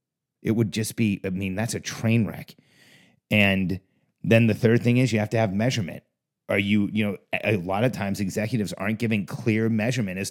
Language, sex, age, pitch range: English, male, 30-49, 105-130 Hz